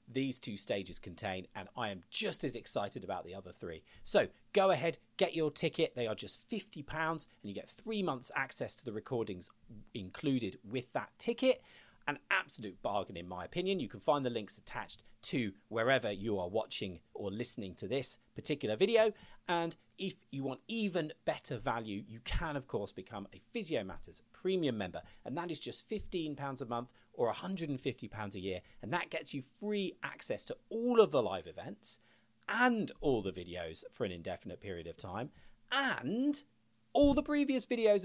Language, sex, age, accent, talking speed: English, male, 40-59, British, 180 wpm